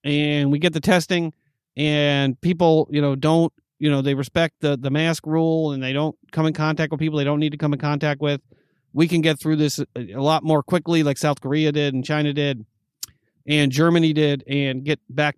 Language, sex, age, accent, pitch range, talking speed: English, male, 40-59, American, 135-155 Hz, 220 wpm